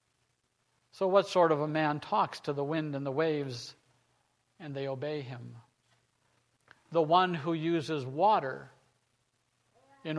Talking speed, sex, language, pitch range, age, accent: 135 wpm, male, English, 150-215 Hz, 50-69, American